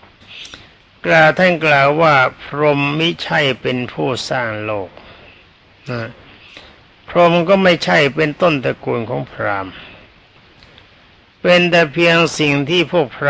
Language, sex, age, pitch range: Thai, male, 60-79, 115-165 Hz